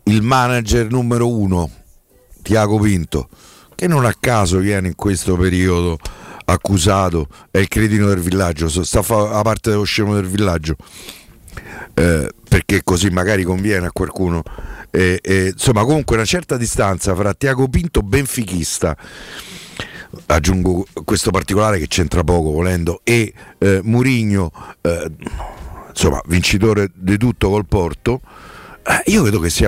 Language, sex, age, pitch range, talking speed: Italian, male, 50-69, 90-110 Hz, 130 wpm